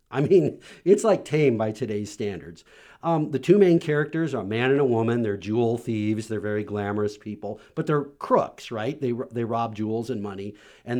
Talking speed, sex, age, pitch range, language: 200 wpm, male, 50-69, 120-160 Hz, English